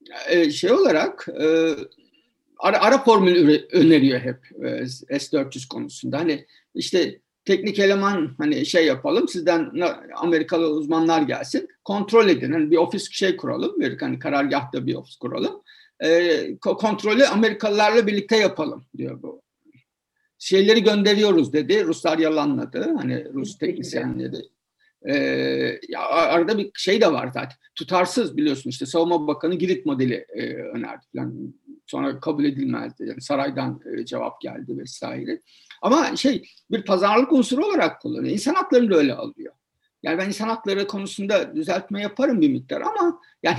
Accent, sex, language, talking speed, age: native, male, Turkish, 135 wpm, 60-79